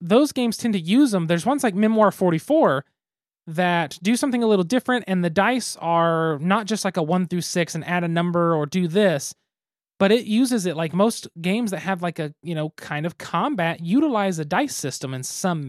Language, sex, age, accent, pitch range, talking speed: English, male, 20-39, American, 160-210 Hz, 220 wpm